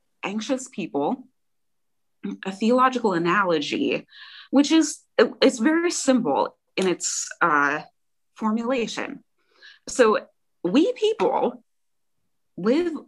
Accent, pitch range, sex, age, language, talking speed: American, 185-275 Hz, female, 20-39, English, 85 wpm